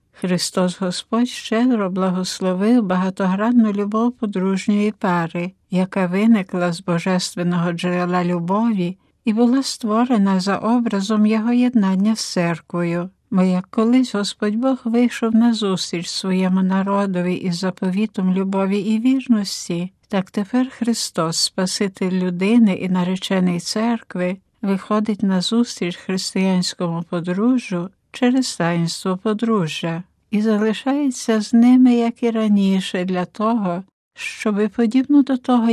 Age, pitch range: 60-79, 180-230 Hz